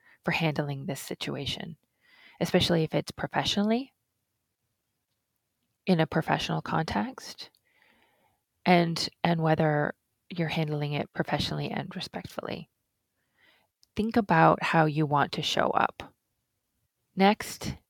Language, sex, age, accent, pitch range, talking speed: English, female, 30-49, American, 155-195 Hz, 100 wpm